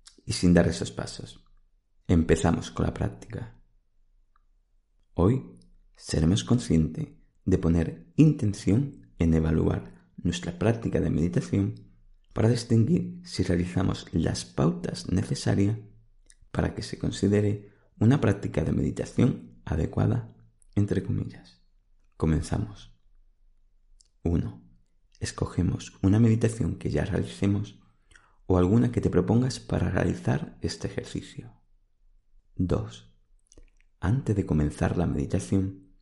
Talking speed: 105 wpm